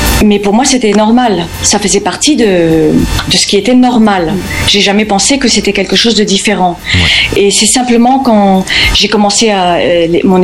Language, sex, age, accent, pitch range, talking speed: French, female, 40-59, French, 180-220 Hz, 180 wpm